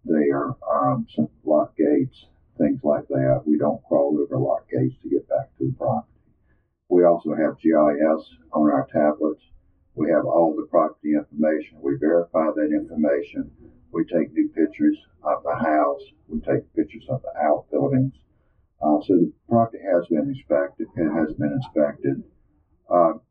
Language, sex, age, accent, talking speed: English, male, 50-69, American, 160 wpm